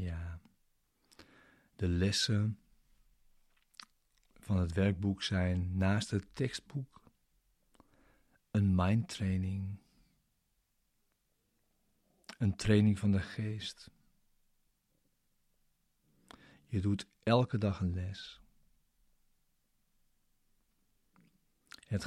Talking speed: 65 wpm